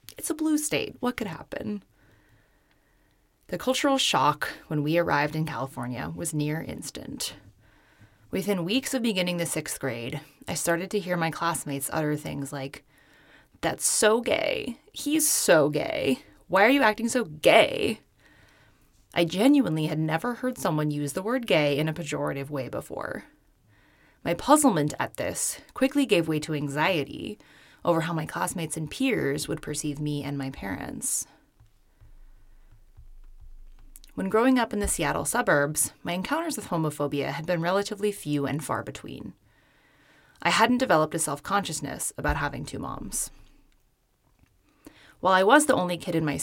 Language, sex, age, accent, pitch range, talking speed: English, female, 20-39, American, 140-200 Hz, 150 wpm